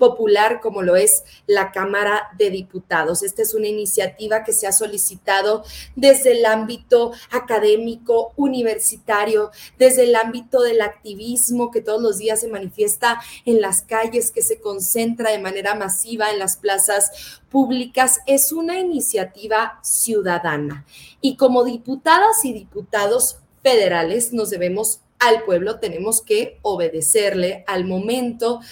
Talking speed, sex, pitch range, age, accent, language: 135 wpm, female, 195-250 Hz, 30-49, Mexican, Spanish